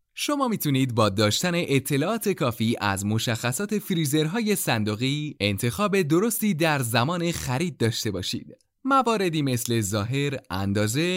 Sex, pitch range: male, 115-185 Hz